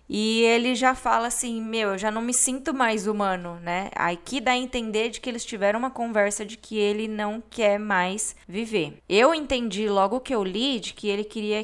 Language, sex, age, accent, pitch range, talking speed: Portuguese, female, 10-29, Brazilian, 195-230 Hz, 215 wpm